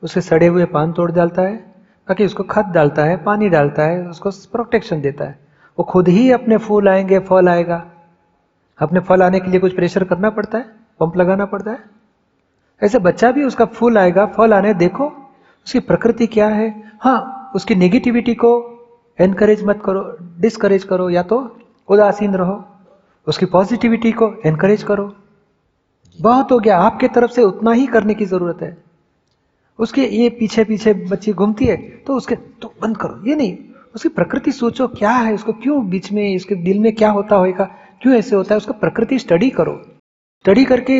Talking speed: 160 wpm